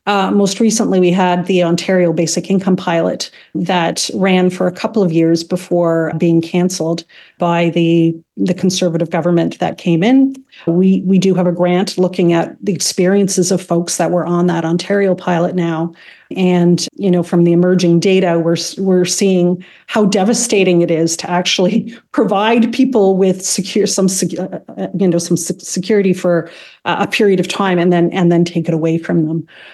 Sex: female